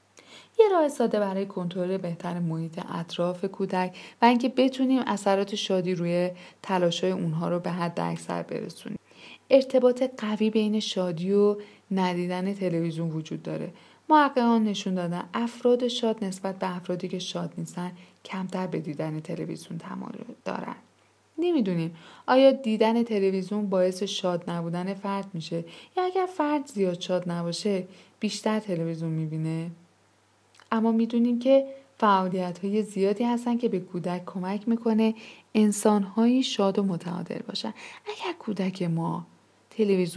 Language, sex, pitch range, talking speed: Persian, female, 175-230 Hz, 130 wpm